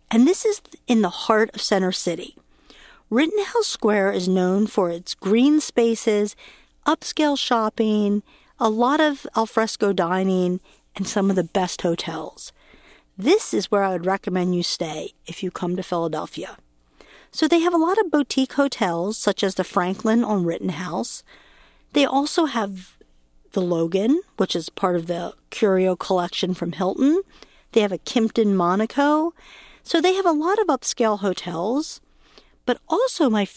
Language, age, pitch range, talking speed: English, 50-69, 185-270 Hz, 155 wpm